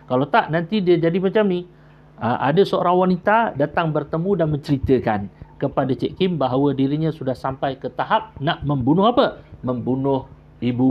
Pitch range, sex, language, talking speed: 120-160 Hz, male, Malay, 160 wpm